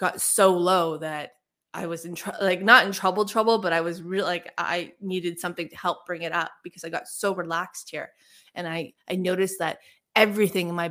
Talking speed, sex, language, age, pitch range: 220 wpm, female, English, 20-39, 175-210 Hz